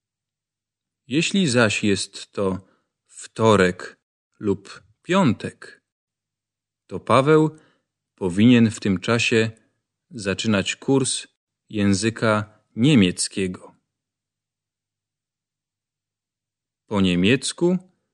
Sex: male